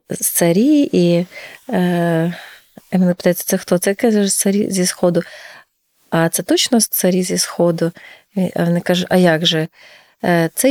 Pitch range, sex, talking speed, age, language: 175-195 Hz, female, 135 wpm, 30-49, Ukrainian